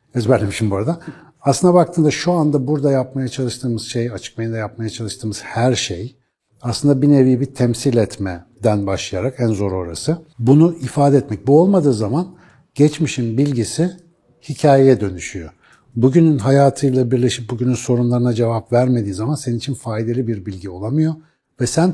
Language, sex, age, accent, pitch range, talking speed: Turkish, male, 60-79, native, 120-155 Hz, 145 wpm